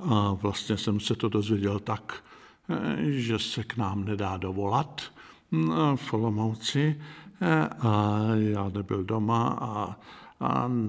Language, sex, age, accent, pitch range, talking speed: Czech, male, 60-79, native, 100-120 Hz, 110 wpm